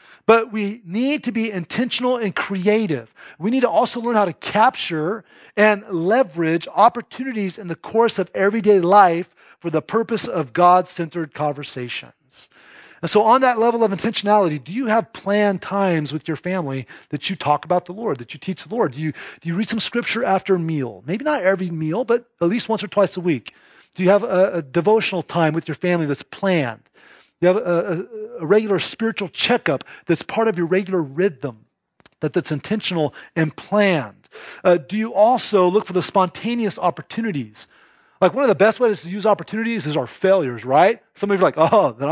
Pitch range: 165-220 Hz